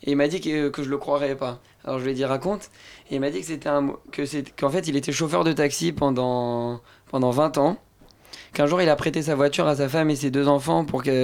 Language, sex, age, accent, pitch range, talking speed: French, male, 20-39, French, 130-150 Hz, 300 wpm